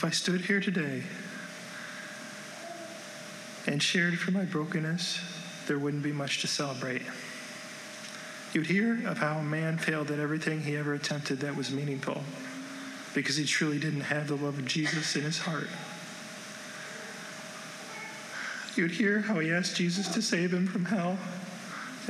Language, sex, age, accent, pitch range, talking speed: English, male, 40-59, American, 180-215 Hz, 145 wpm